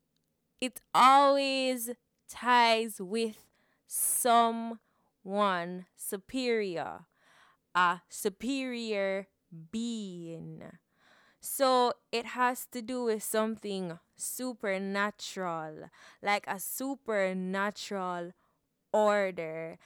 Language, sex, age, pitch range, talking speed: English, female, 20-39, 185-230 Hz, 65 wpm